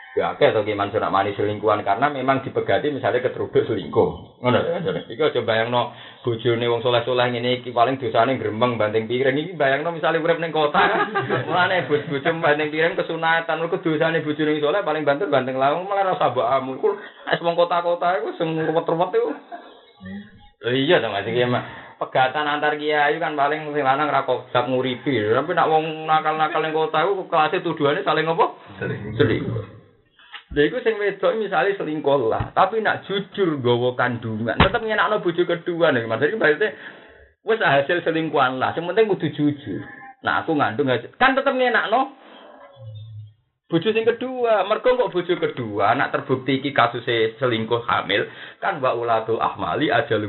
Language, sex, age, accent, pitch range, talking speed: Indonesian, male, 20-39, native, 125-180 Hz, 150 wpm